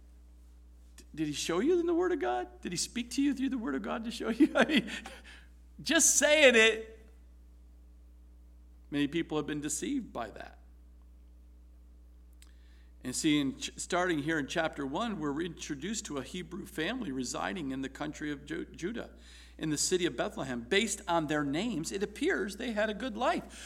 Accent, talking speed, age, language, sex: American, 180 wpm, 50-69, English, male